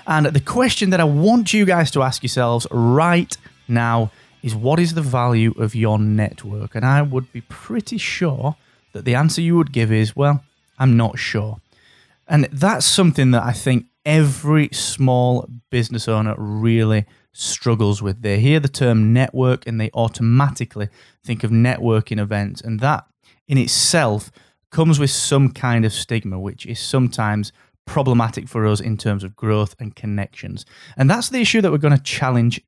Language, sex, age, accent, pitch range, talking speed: English, male, 30-49, British, 115-145 Hz, 175 wpm